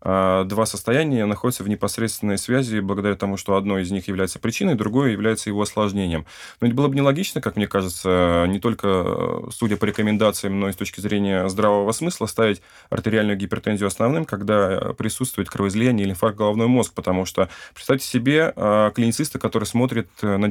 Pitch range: 95-115 Hz